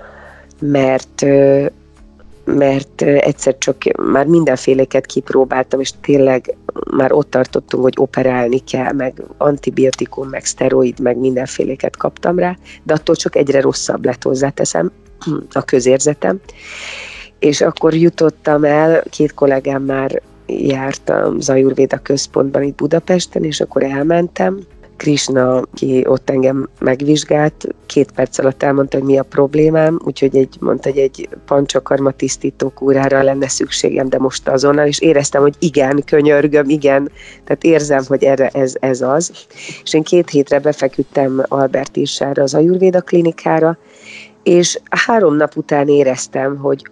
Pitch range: 135-150 Hz